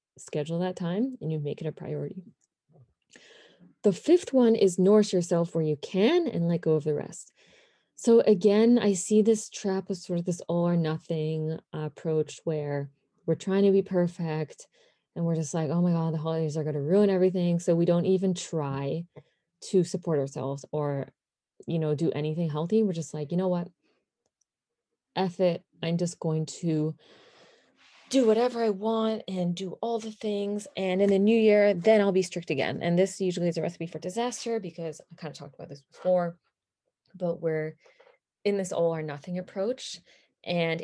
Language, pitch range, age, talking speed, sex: English, 160-195 Hz, 20-39, 190 wpm, female